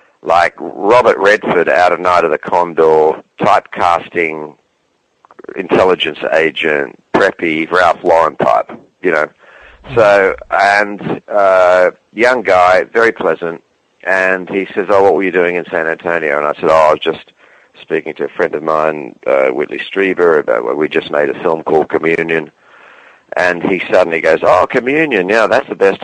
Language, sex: English, male